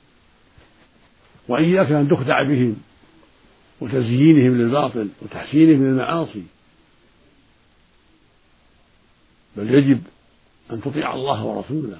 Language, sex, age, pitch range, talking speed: Arabic, male, 60-79, 125-150 Hz, 70 wpm